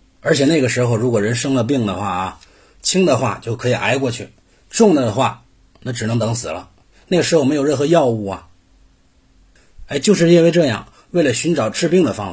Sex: male